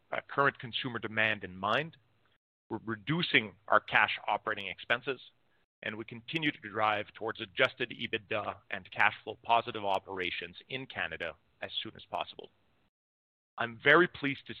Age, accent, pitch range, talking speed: 40-59, American, 110-135 Hz, 145 wpm